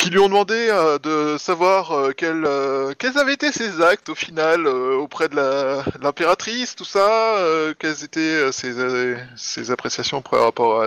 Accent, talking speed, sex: French, 195 wpm, male